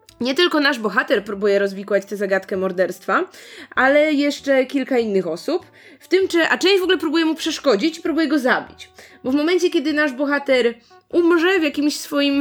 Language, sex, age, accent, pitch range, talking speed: Polish, female, 20-39, native, 225-310 Hz, 180 wpm